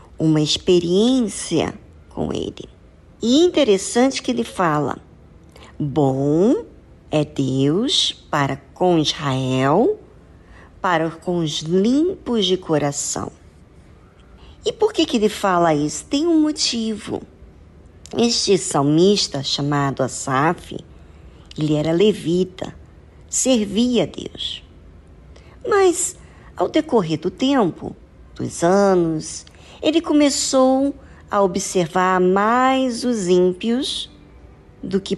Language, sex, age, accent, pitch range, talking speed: Portuguese, male, 50-69, Brazilian, 150-245 Hz, 95 wpm